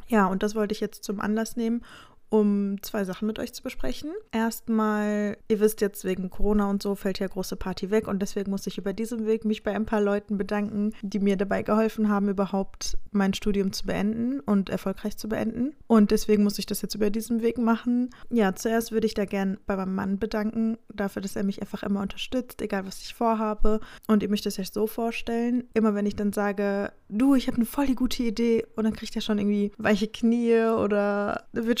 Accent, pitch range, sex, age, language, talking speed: German, 205-225 Hz, female, 20-39, German, 220 wpm